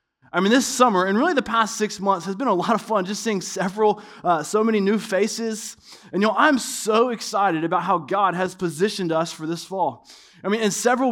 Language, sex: English, male